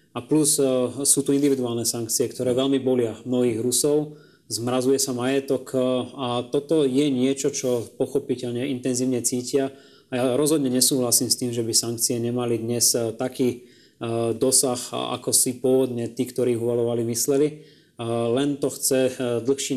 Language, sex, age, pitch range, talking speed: Slovak, male, 20-39, 120-135 Hz, 140 wpm